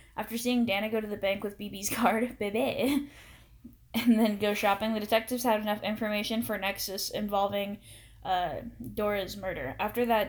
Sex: female